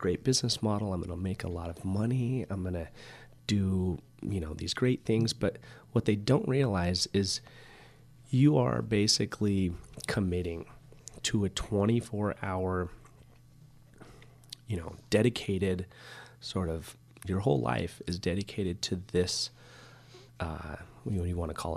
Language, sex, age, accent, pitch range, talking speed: English, male, 30-49, American, 90-120 Hz, 145 wpm